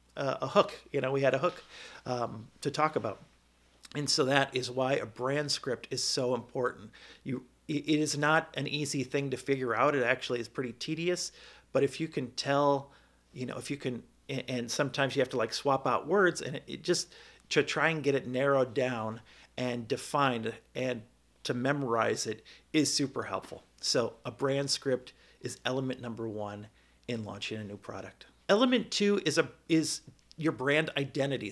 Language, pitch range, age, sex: English, 125-145 Hz, 40-59, male